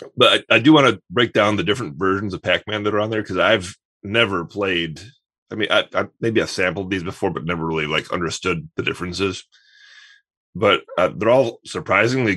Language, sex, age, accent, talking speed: English, male, 30-49, American, 205 wpm